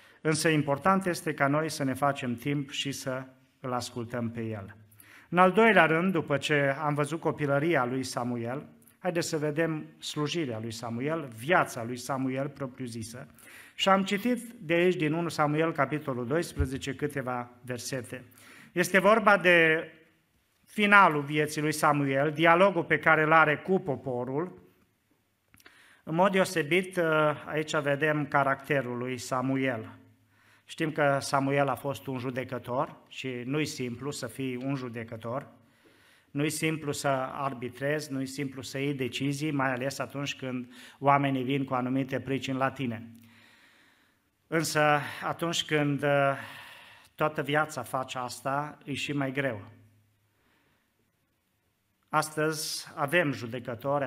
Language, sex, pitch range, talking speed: Romanian, male, 125-155 Hz, 130 wpm